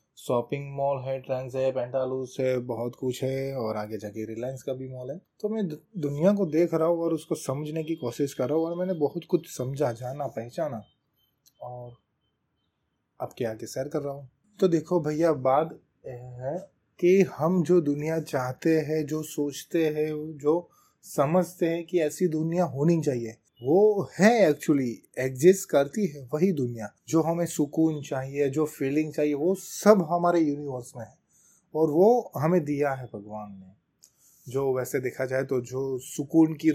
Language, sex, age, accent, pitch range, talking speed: English, male, 20-39, Indian, 130-170 Hz, 160 wpm